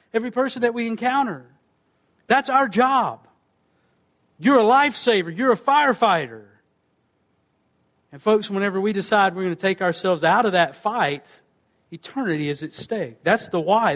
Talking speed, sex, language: 150 wpm, male, English